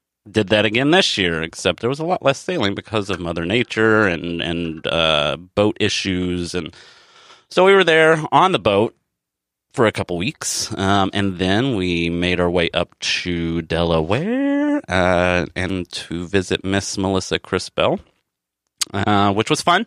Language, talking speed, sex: English, 165 wpm, male